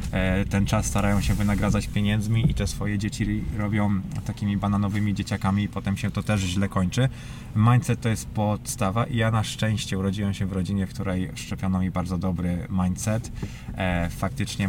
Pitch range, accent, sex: 90-105 Hz, native, male